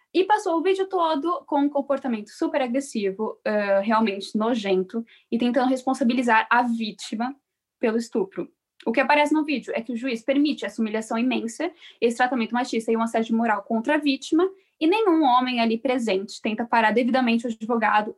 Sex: female